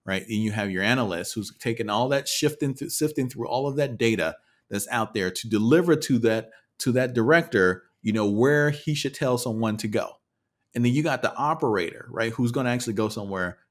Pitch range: 90-120 Hz